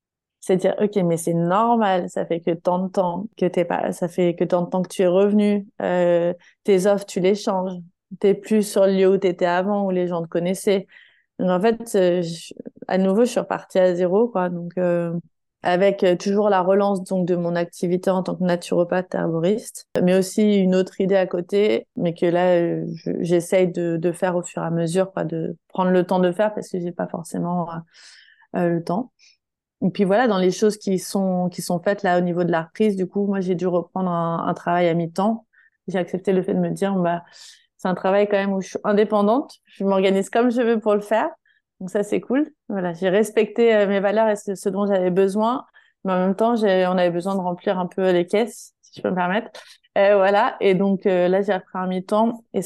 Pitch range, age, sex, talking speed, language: 180-205 Hz, 20-39, female, 240 wpm, French